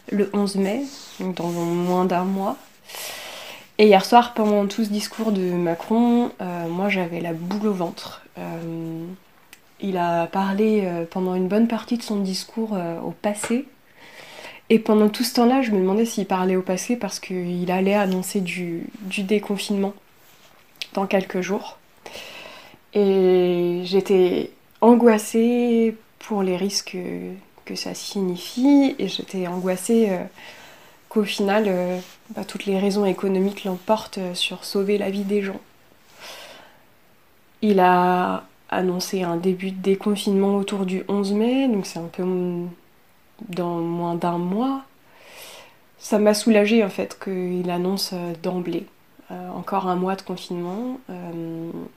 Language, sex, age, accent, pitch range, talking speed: French, female, 20-39, French, 180-215 Hz, 140 wpm